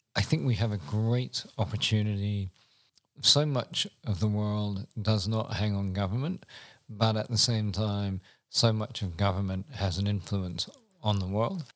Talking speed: 165 wpm